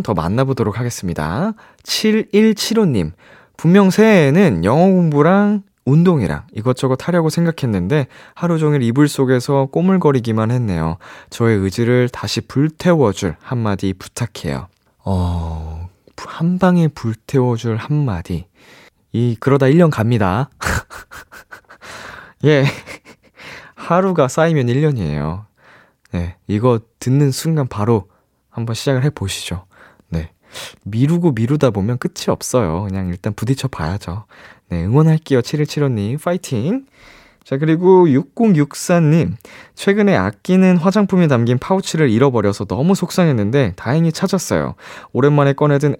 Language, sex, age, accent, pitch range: Korean, male, 20-39, native, 105-160 Hz